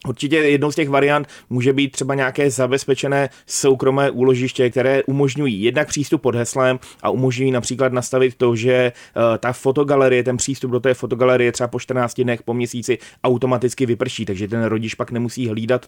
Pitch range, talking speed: 110-130 Hz, 170 wpm